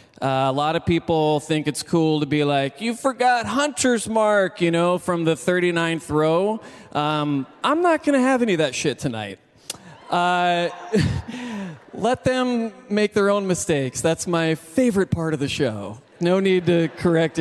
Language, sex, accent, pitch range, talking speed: English, male, American, 145-205 Hz, 170 wpm